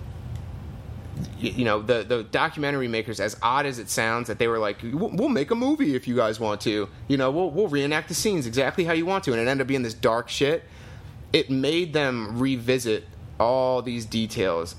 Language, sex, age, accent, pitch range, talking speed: English, male, 30-49, American, 110-145 Hz, 210 wpm